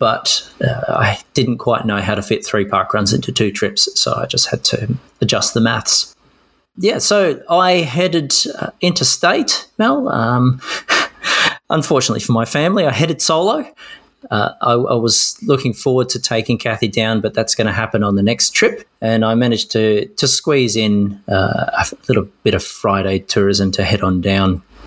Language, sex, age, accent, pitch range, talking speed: English, male, 30-49, Australian, 100-125 Hz, 180 wpm